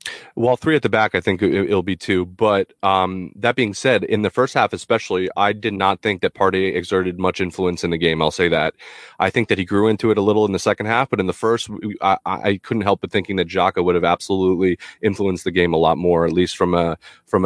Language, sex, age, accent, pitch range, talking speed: English, male, 30-49, American, 90-110 Hz, 255 wpm